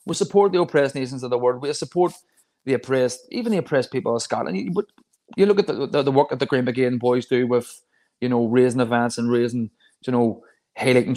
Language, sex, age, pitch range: English, male, 20-39, 120-165 Hz